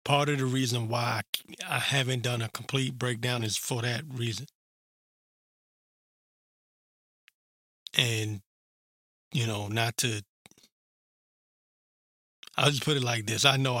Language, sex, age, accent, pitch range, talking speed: English, male, 20-39, American, 110-130 Hz, 120 wpm